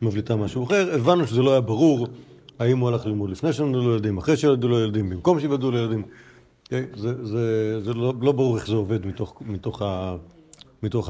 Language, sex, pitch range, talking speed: Hebrew, male, 105-135 Hz, 200 wpm